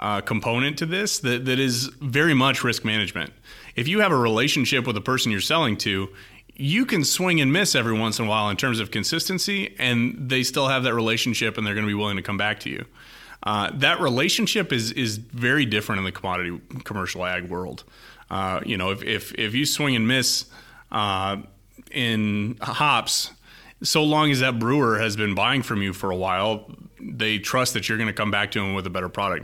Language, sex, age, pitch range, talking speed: English, male, 30-49, 105-130 Hz, 215 wpm